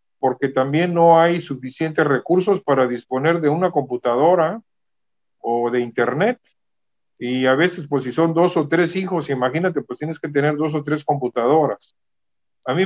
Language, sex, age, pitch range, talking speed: Spanish, male, 40-59, 130-170 Hz, 165 wpm